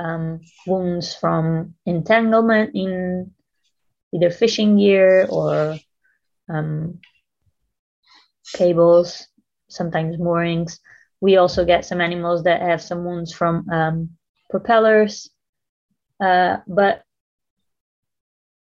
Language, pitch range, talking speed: English, 165-195 Hz, 85 wpm